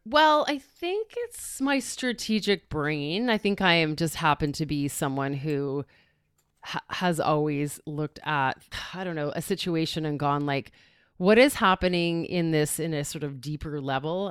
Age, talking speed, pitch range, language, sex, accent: 30-49, 170 wpm, 145-195 Hz, English, female, American